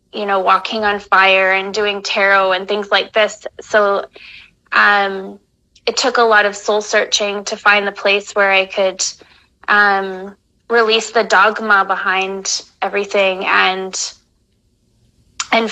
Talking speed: 135 wpm